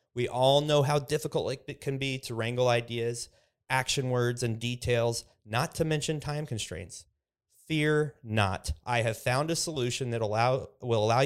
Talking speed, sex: 165 wpm, male